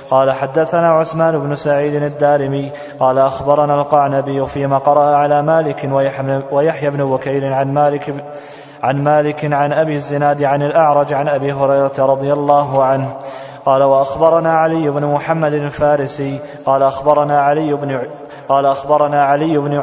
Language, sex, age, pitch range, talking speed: Arabic, male, 20-39, 135-150 Hz, 135 wpm